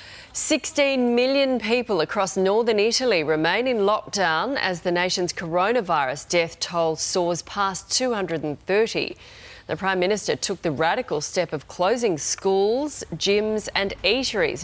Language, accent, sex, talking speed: English, Australian, female, 125 wpm